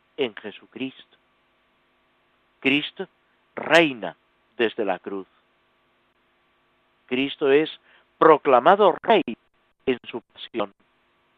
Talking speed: 75 wpm